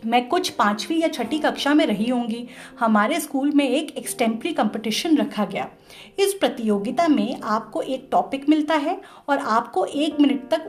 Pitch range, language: 230-315 Hz, Hindi